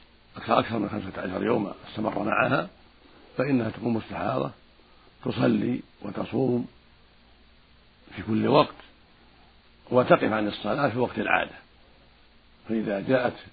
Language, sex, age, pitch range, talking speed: Arabic, male, 60-79, 75-115 Hz, 100 wpm